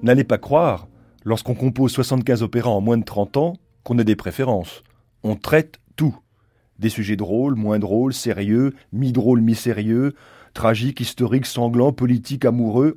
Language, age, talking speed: French, 30-49, 155 wpm